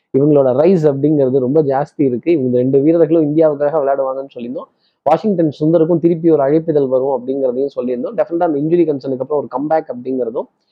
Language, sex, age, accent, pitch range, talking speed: Tamil, male, 20-39, native, 130-170 Hz, 150 wpm